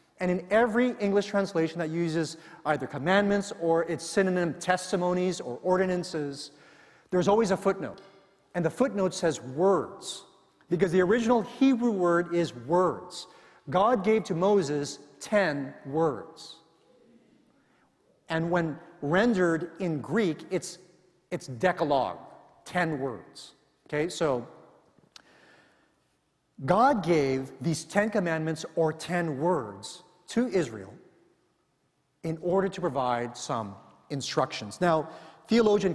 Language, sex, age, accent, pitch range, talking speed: English, male, 40-59, American, 145-185 Hz, 110 wpm